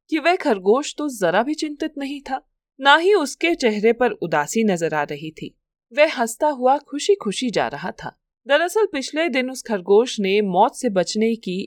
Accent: native